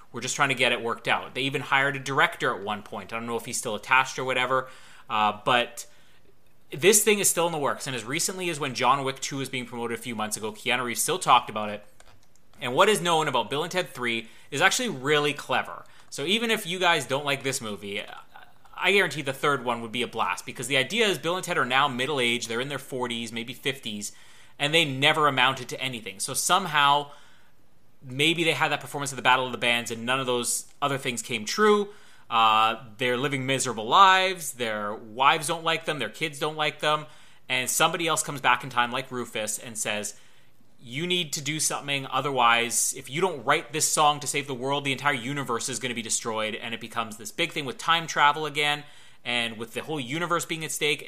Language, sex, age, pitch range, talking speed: English, male, 30-49, 120-150 Hz, 230 wpm